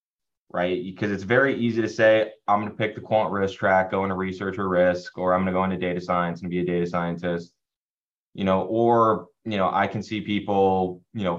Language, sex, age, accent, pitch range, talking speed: English, male, 20-39, American, 95-115 Hz, 230 wpm